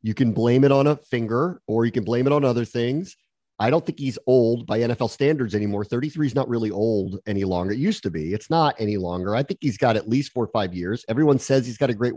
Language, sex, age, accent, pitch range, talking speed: English, male, 40-59, American, 115-155 Hz, 270 wpm